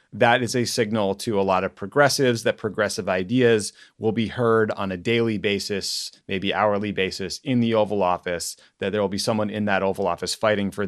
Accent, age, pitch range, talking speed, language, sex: American, 30-49, 95-120 Hz, 205 wpm, English, male